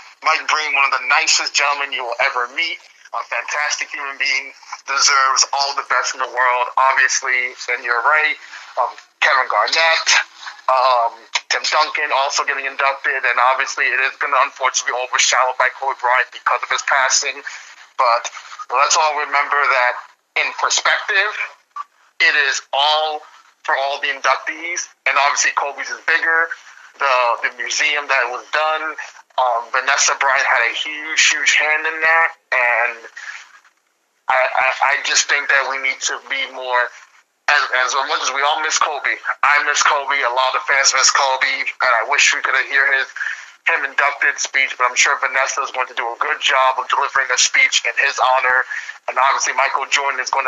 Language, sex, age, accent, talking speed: English, male, 30-49, American, 175 wpm